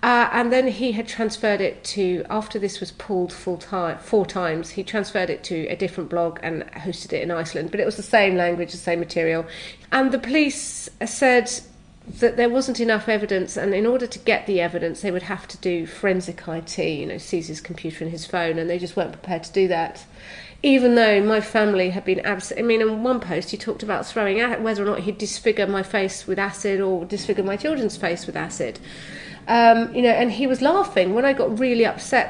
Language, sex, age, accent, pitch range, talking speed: English, female, 40-59, British, 180-230 Hz, 220 wpm